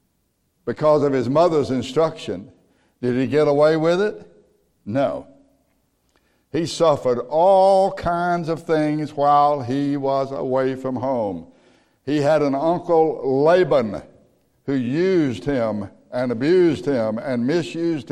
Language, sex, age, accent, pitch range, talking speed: English, male, 60-79, American, 125-155 Hz, 125 wpm